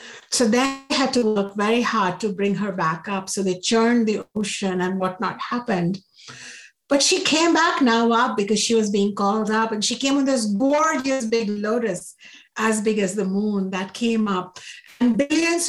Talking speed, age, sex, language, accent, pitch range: 190 wpm, 60-79, female, English, Indian, 200-255 Hz